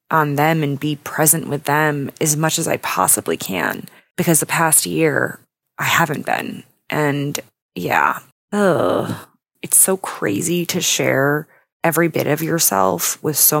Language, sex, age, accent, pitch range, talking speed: English, female, 20-39, American, 140-165 Hz, 145 wpm